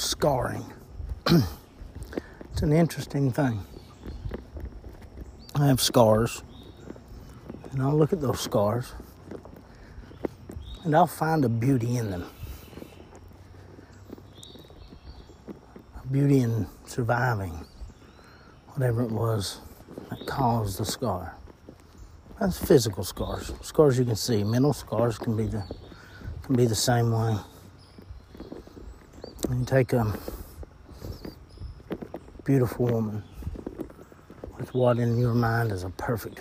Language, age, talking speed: English, 60-79, 100 wpm